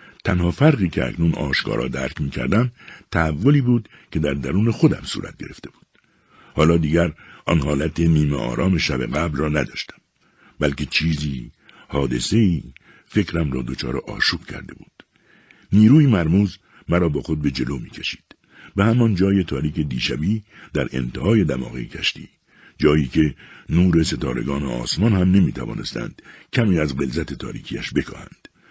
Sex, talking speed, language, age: male, 140 wpm, Persian, 60-79